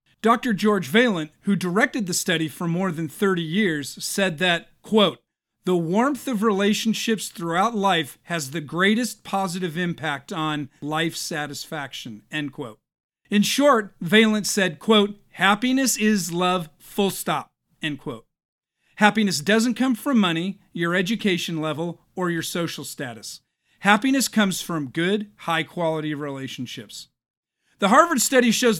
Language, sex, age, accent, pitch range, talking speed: English, male, 40-59, American, 160-215 Hz, 135 wpm